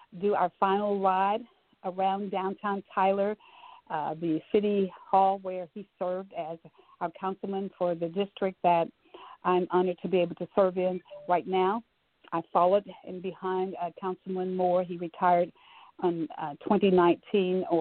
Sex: female